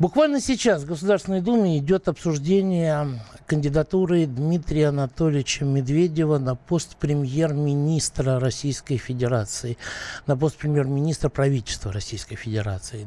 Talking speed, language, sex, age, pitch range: 100 wpm, Russian, male, 60-79, 130-170 Hz